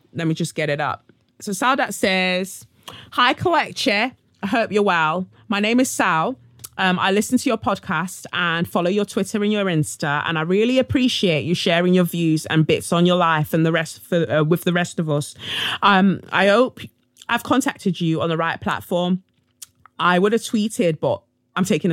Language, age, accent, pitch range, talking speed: English, 20-39, British, 155-195 Hz, 200 wpm